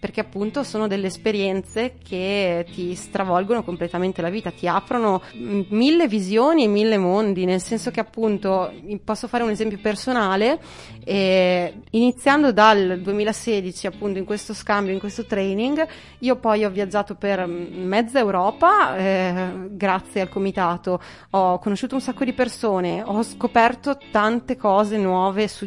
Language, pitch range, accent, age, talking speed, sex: Italian, 185-220 Hz, native, 30-49, 145 wpm, female